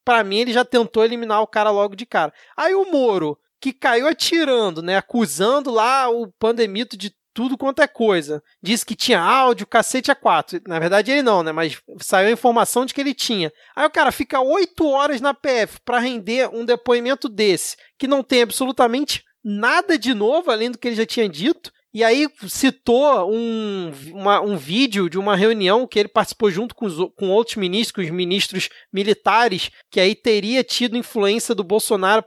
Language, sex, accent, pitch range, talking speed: Portuguese, male, Brazilian, 200-275 Hz, 190 wpm